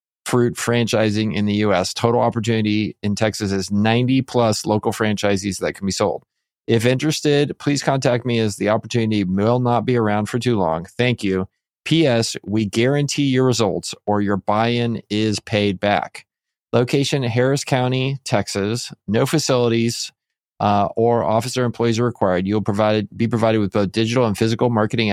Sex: male